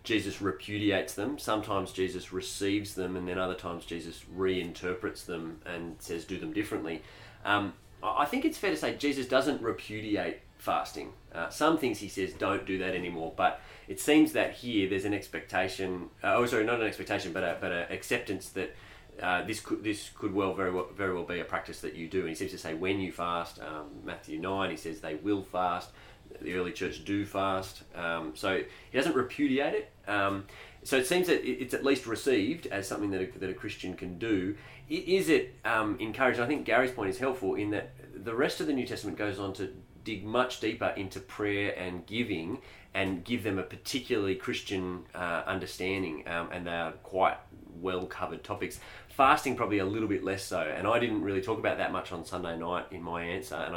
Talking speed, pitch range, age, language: 205 wpm, 90-105 Hz, 30-49, English